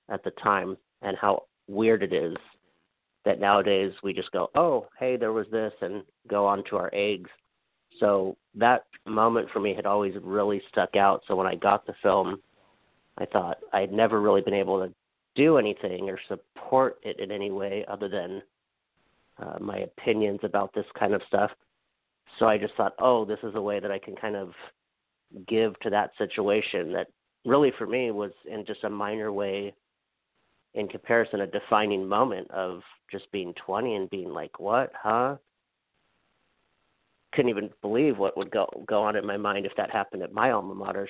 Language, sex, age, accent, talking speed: English, male, 40-59, American, 185 wpm